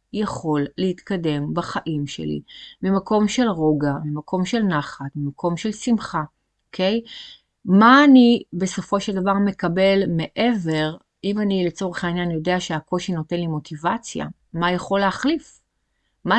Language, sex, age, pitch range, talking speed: Hebrew, female, 30-49, 160-205 Hz, 130 wpm